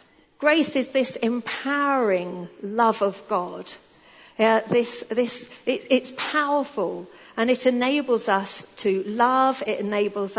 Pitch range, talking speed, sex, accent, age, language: 195-255 Hz, 120 wpm, female, British, 40-59, English